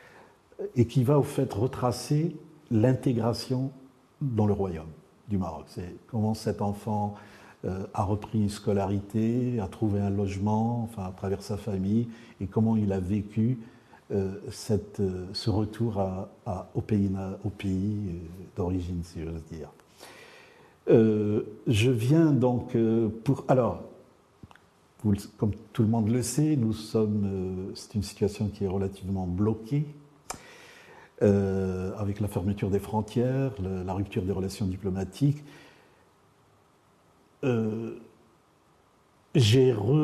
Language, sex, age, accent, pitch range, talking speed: French, male, 60-79, French, 100-125 Hz, 135 wpm